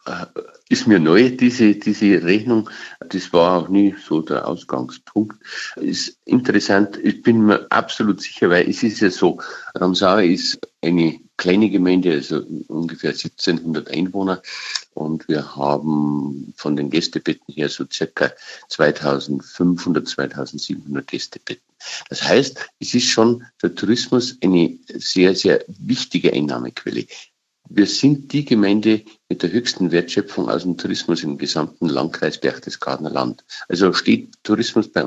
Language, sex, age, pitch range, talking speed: German, male, 50-69, 75-110 Hz, 135 wpm